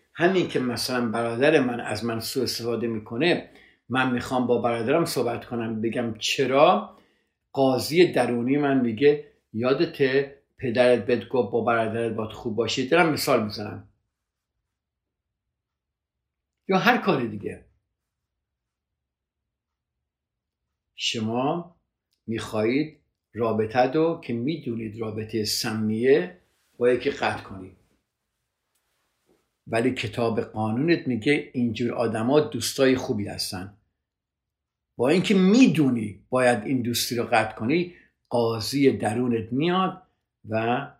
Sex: male